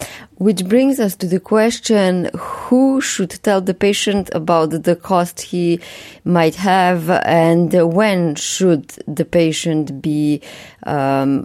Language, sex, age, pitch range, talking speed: English, female, 20-39, 165-200 Hz, 125 wpm